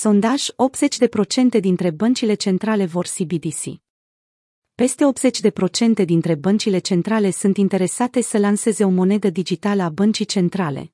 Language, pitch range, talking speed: Romanian, 175-220 Hz, 120 wpm